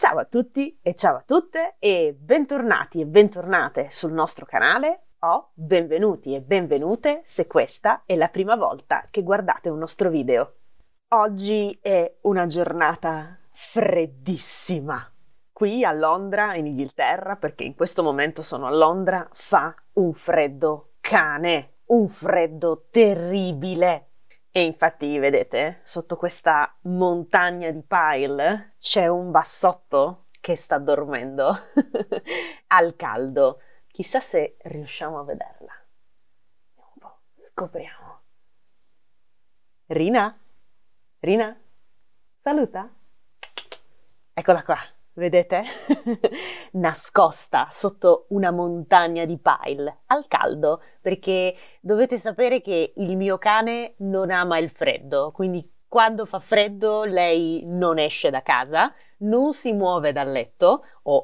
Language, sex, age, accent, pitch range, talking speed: Italian, female, 30-49, native, 165-225 Hz, 110 wpm